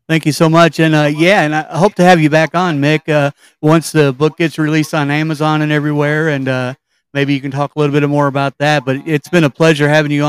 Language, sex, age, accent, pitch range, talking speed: English, male, 40-59, American, 145-175 Hz, 260 wpm